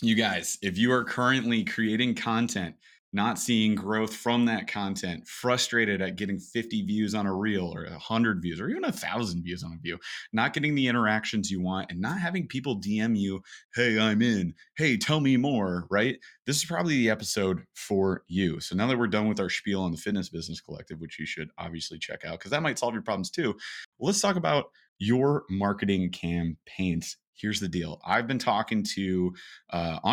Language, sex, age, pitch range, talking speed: English, male, 30-49, 90-125 Hz, 200 wpm